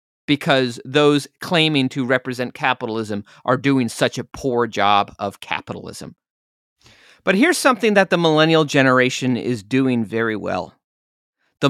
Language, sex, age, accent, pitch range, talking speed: English, male, 40-59, American, 120-160 Hz, 135 wpm